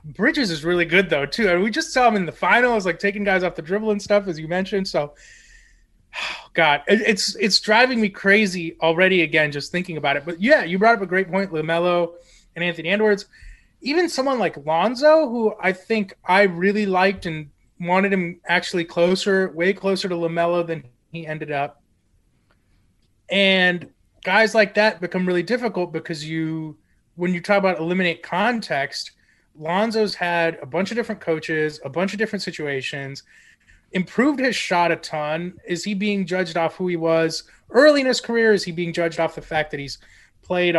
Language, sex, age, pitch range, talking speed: English, male, 30-49, 155-200 Hz, 195 wpm